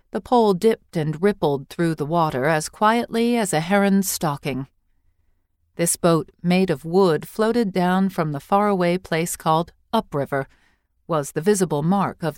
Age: 40-59